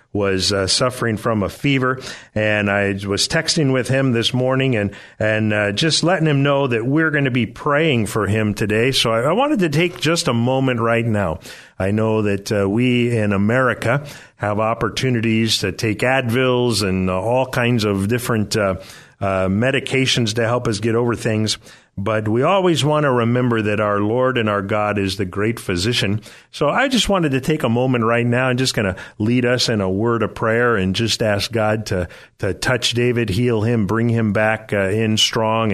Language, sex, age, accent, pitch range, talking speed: English, male, 50-69, American, 105-130 Hz, 205 wpm